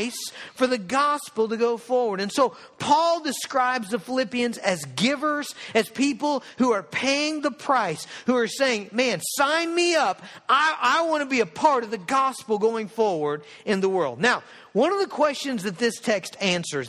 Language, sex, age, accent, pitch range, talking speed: English, male, 50-69, American, 210-280 Hz, 180 wpm